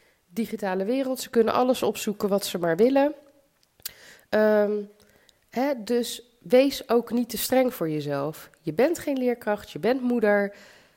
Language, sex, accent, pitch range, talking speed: Dutch, female, Dutch, 170-250 Hz, 135 wpm